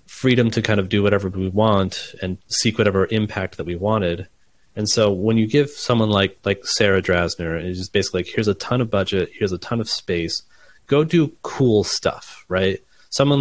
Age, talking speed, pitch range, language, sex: 30-49, 200 wpm, 90-105 Hz, English, male